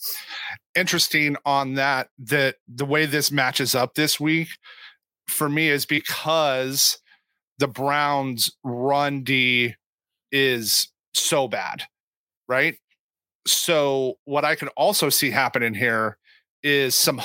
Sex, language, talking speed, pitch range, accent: male, English, 115 wpm, 130-155 Hz, American